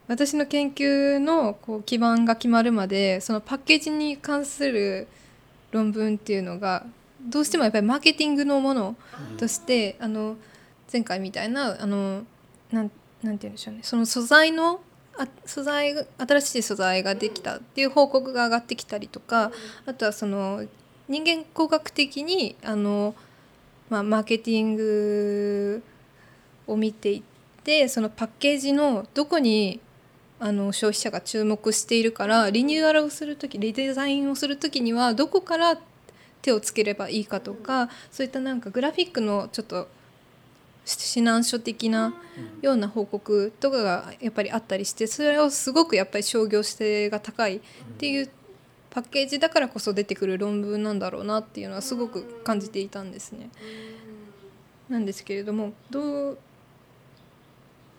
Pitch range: 210-275 Hz